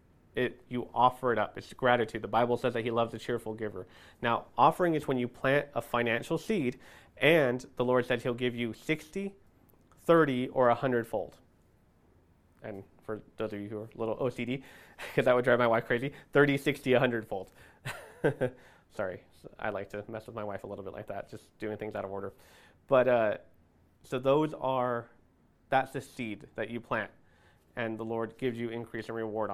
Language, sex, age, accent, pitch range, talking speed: English, male, 30-49, American, 110-130 Hz, 190 wpm